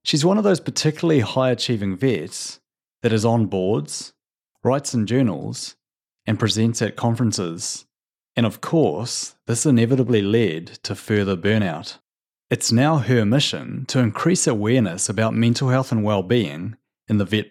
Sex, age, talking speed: male, 30-49, 145 wpm